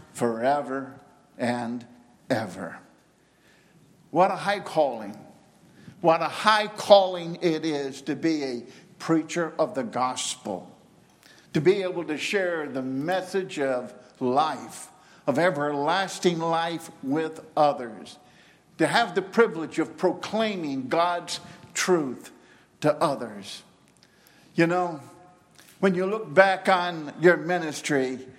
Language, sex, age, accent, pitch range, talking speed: English, male, 50-69, American, 150-195 Hz, 110 wpm